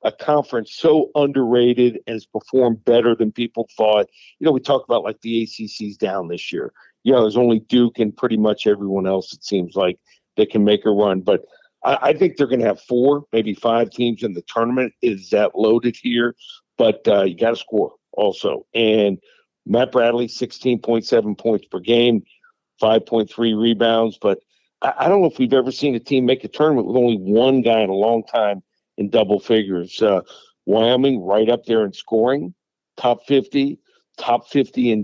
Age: 50-69